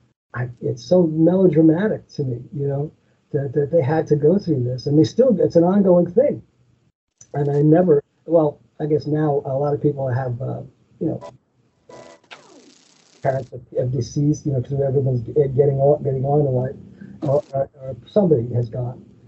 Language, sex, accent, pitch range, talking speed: English, male, American, 140-170 Hz, 170 wpm